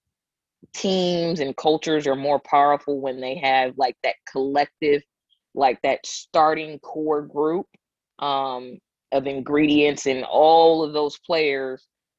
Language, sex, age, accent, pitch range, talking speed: English, female, 20-39, American, 140-170 Hz, 125 wpm